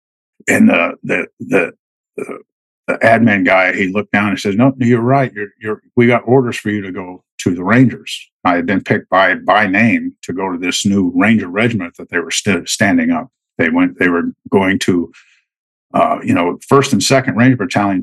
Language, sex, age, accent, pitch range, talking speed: English, male, 50-69, American, 95-140 Hz, 205 wpm